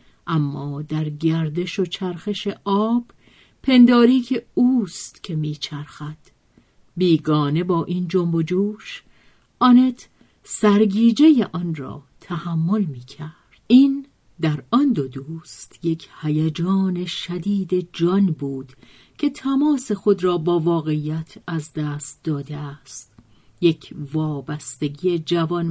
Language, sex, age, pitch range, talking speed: Persian, female, 50-69, 155-205 Hz, 110 wpm